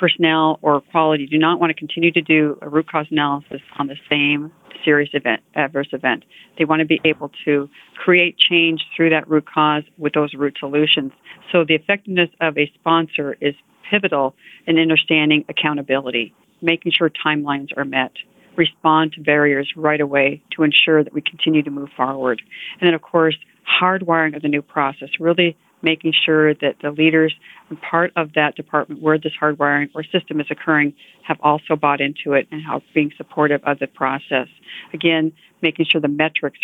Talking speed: 180 wpm